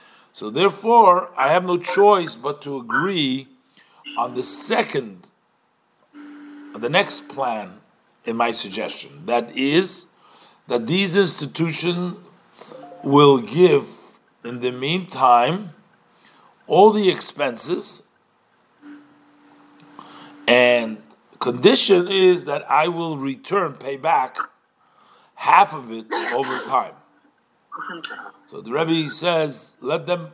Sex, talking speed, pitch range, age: male, 100 wpm, 135-190 Hz, 50-69